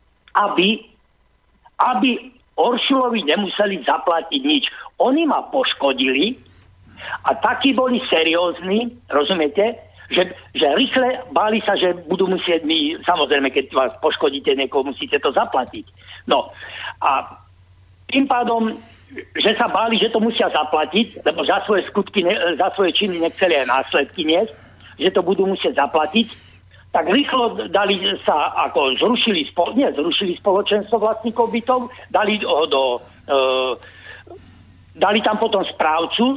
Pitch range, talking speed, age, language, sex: 165-235 Hz, 125 wpm, 60-79, Slovak, male